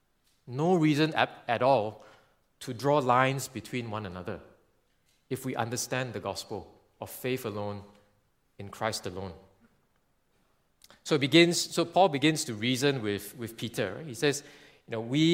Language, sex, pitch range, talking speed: English, male, 120-165 Hz, 150 wpm